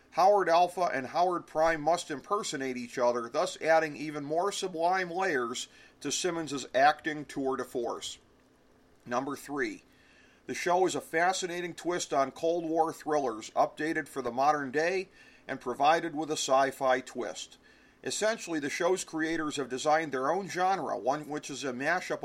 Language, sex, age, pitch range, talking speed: English, male, 40-59, 135-175 Hz, 160 wpm